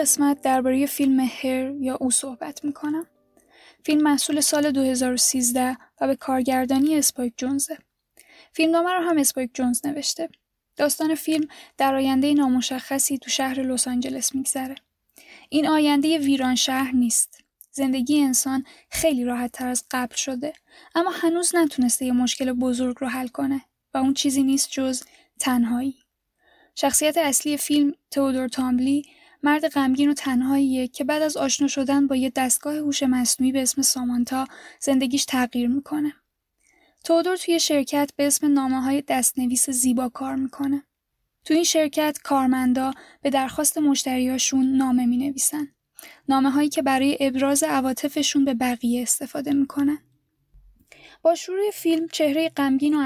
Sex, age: female, 10-29